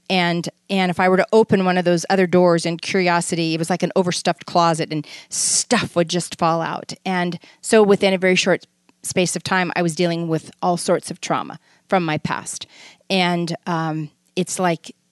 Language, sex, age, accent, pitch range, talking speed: English, female, 30-49, American, 165-195 Hz, 200 wpm